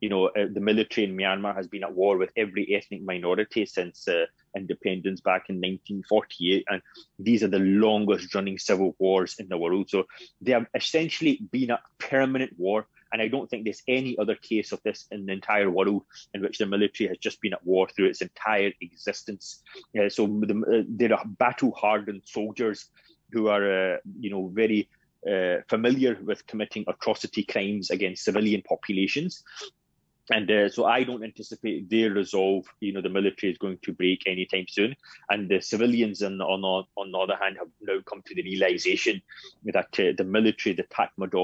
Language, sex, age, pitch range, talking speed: English, male, 30-49, 95-110 Hz, 185 wpm